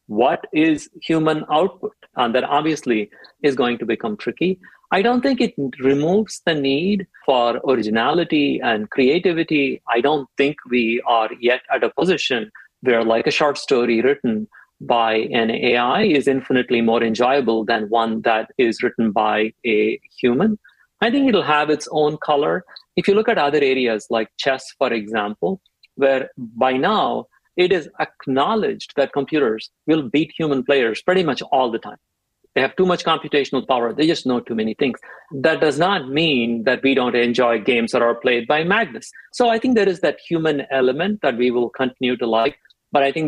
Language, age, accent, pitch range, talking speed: German, 50-69, Indian, 120-175 Hz, 180 wpm